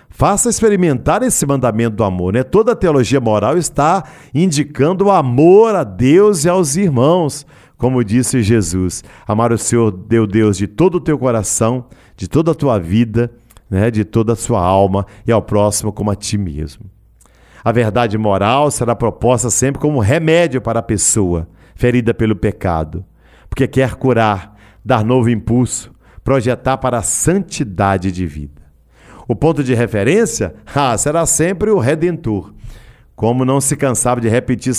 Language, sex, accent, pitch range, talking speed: Portuguese, male, Brazilian, 105-135 Hz, 160 wpm